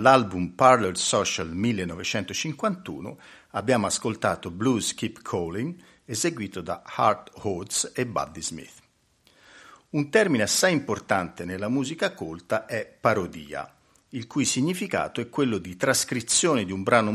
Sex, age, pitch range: male, 50-69, 100-170 Hz